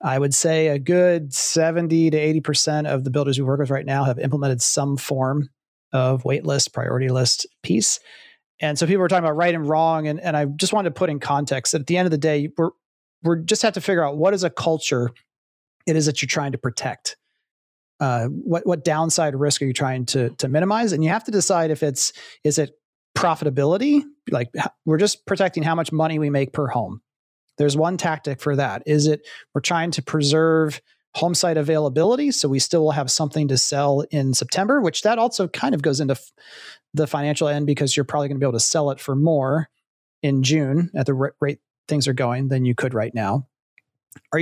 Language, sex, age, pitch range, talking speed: English, male, 30-49, 140-165 Hz, 220 wpm